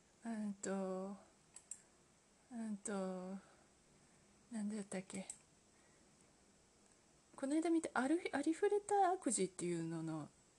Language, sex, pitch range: Japanese, female, 195-290 Hz